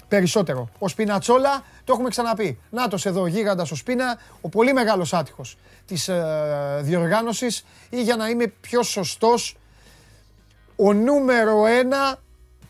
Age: 30-49